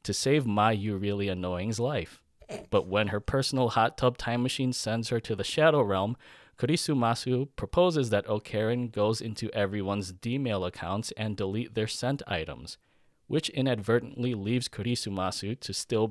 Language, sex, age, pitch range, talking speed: English, male, 20-39, 100-125 Hz, 160 wpm